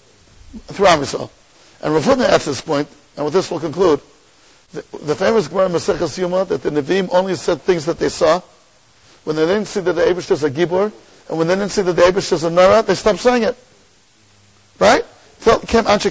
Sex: male